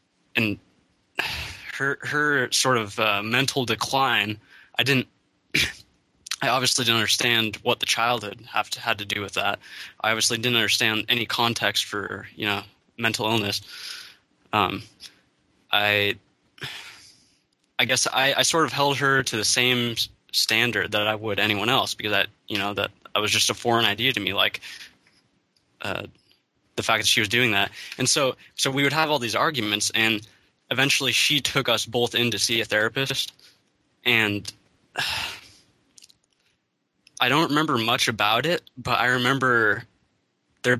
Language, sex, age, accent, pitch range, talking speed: English, male, 20-39, American, 110-130 Hz, 160 wpm